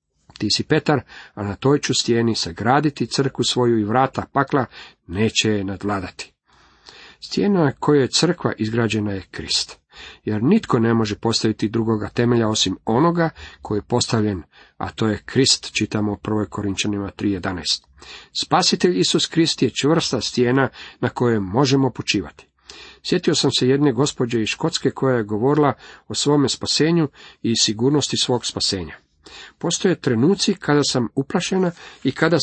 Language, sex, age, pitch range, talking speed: Croatian, male, 50-69, 105-140 Hz, 145 wpm